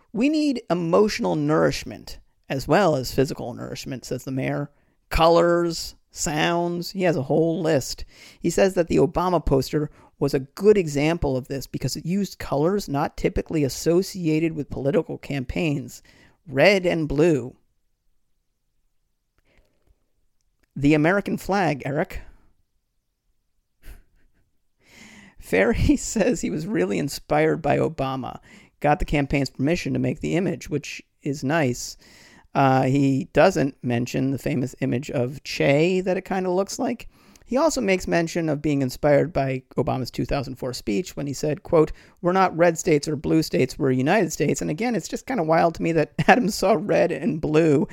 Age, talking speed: 40-59, 155 wpm